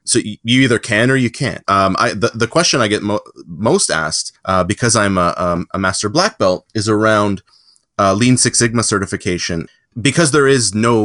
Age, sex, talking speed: 30-49, male, 200 wpm